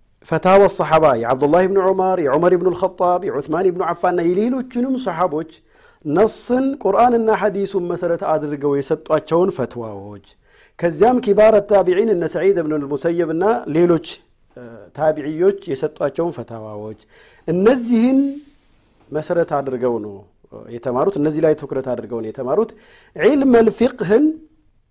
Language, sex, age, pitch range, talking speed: Amharic, male, 50-69, 135-210 Hz, 105 wpm